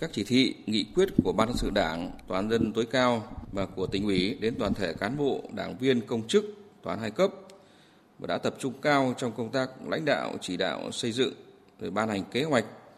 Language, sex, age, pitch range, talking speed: Vietnamese, male, 20-39, 110-135 Hz, 225 wpm